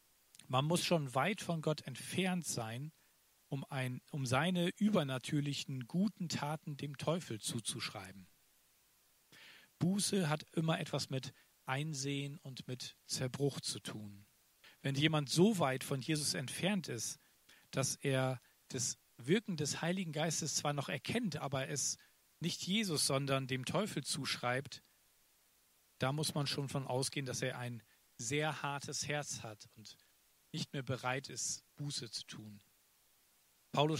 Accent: German